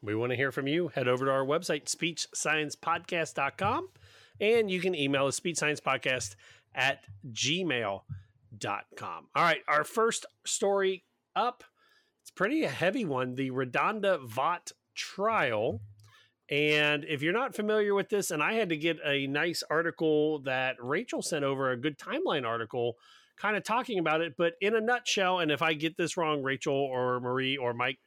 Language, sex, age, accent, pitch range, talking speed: English, male, 30-49, American, 130-185 Hz, 165 wpm